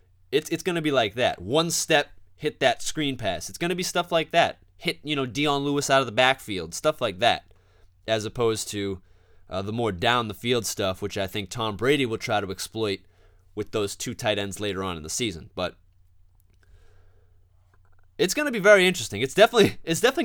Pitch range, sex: 95-145 Hz, male